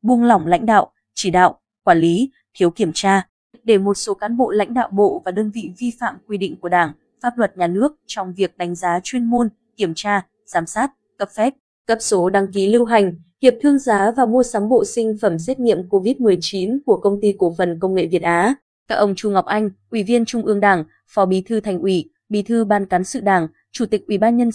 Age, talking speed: 20-39, 235 wpm